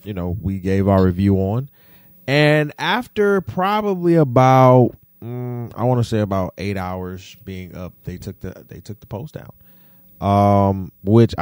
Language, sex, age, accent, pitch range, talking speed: English, male, 30-49, American, 95-140 Hz, 165 wpm